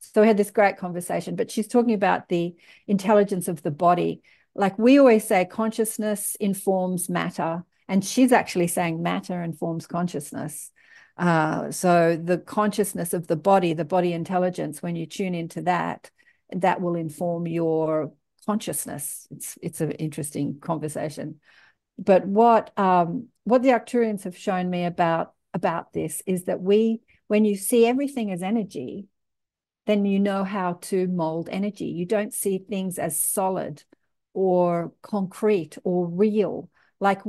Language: English